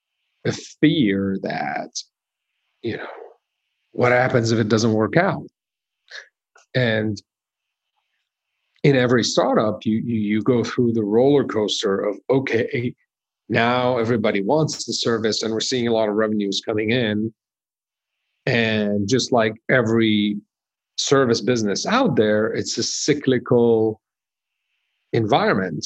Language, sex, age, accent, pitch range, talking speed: English, male, 50-69, American, 105-125 Hz, 120 wpm